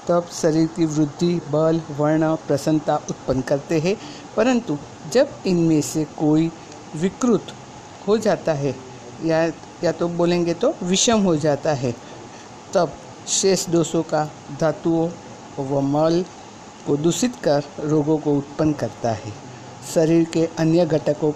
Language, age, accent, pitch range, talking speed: Hindi, 50-69, native, 145-175 Hz, 130 wpm